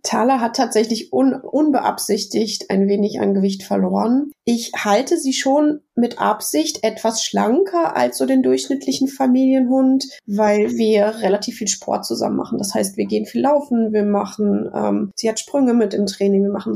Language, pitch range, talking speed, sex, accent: German, 190-230 Hz, 165 wpm, female, German